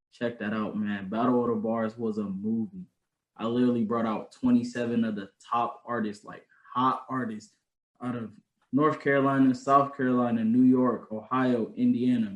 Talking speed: 160 wpm